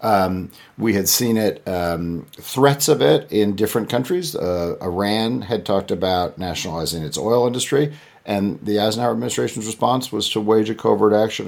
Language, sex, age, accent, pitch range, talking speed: English, male, 50-69, American, 85-115 Hz, 165 wpm